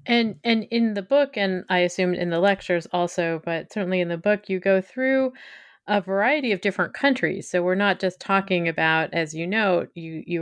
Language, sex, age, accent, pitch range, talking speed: English, female, 30-49, American, 160-195 Hz, 205 wpm